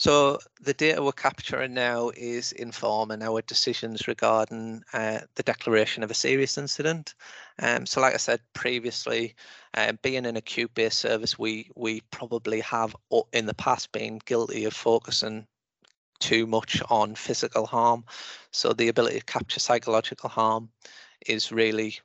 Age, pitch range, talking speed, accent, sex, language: 30-49, 110-120 Hz, 150 wpm, British, male, English